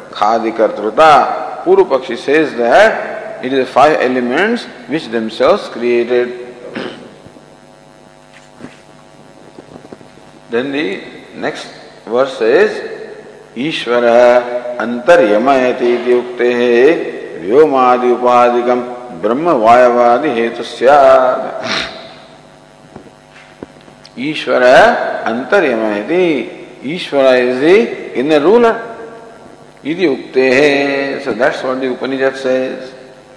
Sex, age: male, 50-69